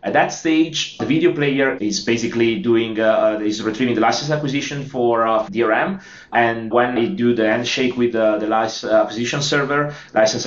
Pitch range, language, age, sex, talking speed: 110-125 Hz, English, 30-49, male, 180 wpm